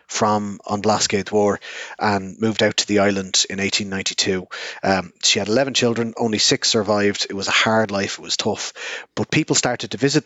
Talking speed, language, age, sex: 195 wpm, English, 30-49, male